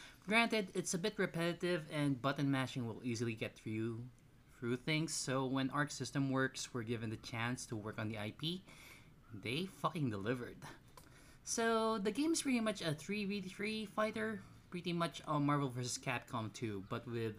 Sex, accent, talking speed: male, native, 165 wpm